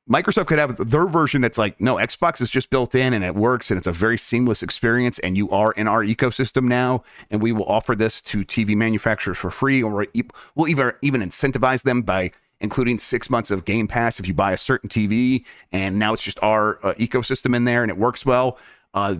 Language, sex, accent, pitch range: English, male, American, 100-135 Hz